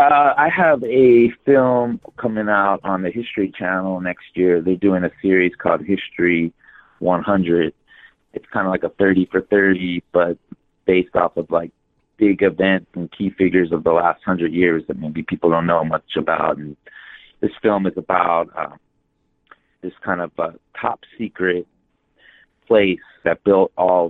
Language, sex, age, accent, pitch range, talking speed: English, male, 30-49, American, 80-95 Hz, 160 wpm